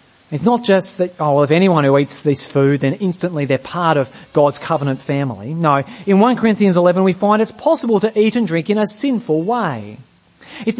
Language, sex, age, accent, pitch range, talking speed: English, male, 40-59, Australian, 140-215 Hz, 205 wpm